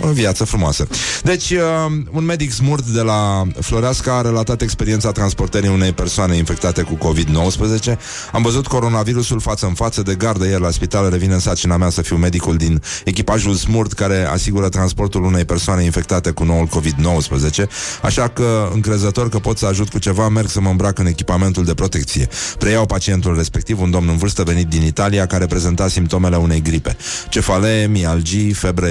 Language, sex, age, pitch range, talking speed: Romanian, male, 30-49, 85-110 Hz, 170 wpm